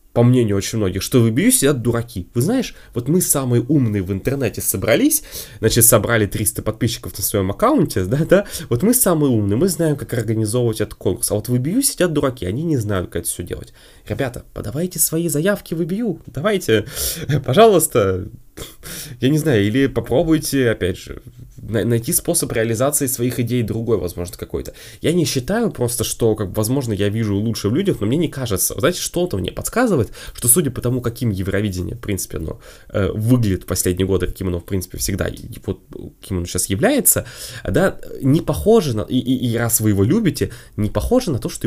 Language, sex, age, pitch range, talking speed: Russian, male, 20-39, 105-150 Hz, 195 wpm